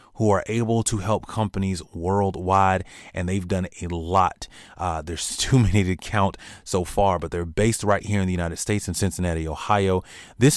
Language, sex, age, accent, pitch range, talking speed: English, male, 30-49, American, 90-105 Hz, 185 wpm